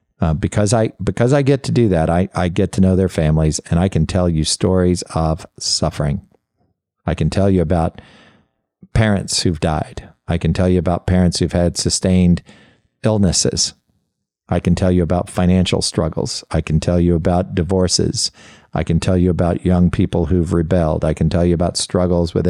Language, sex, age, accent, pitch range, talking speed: English, male, 50-69, American, 85-100 Hz, 190 wpm